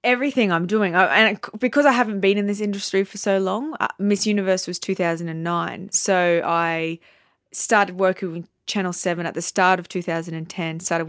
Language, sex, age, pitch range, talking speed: English, female, 20-39, 170-200 Hz, 180 wpm